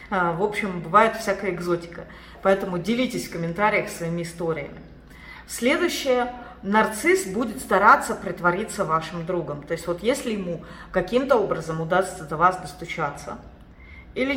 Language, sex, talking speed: Russian, female, 125 wpm